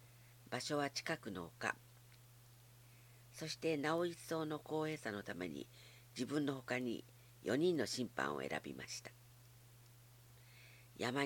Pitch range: 120-125 Hz